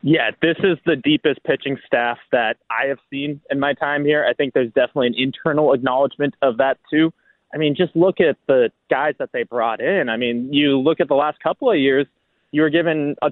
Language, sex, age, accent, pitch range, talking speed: English, male, 20-39, American, 135-170 Hz, 225 wpm